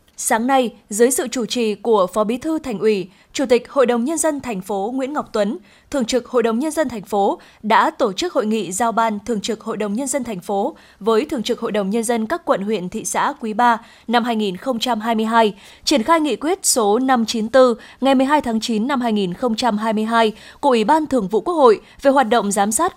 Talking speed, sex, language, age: 225 wpm, female, Vietnamese, 20-39